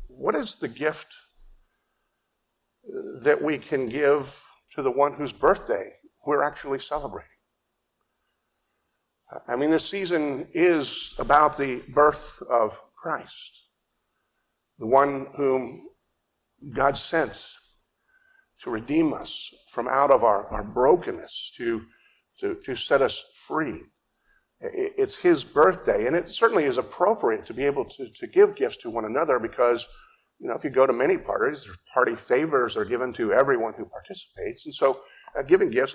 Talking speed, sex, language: 145 wpm, male, English